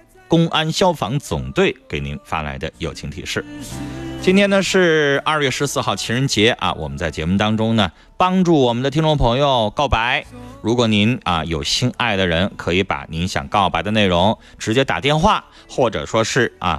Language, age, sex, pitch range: Chinese, 30-49, male, 95-145 Hz